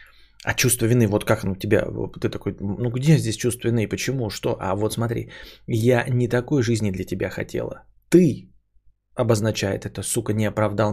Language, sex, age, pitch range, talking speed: Bulgarian, male, 20-39, 105-130 Hz, 190 wpm